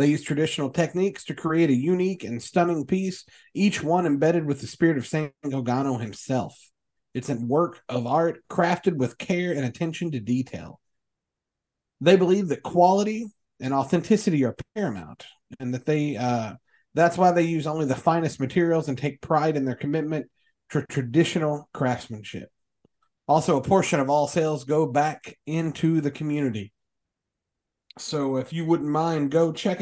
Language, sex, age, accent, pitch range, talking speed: English, male, 40-59, American, 130-170 Hz, 160 wpm